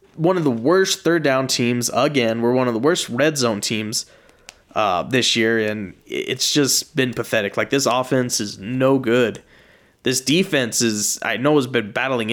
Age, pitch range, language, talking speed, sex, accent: 20-39, 115-140 Hz, English, 185 wpm, male, American